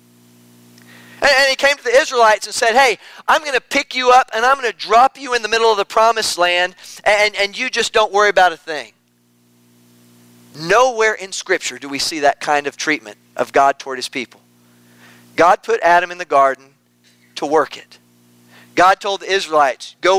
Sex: male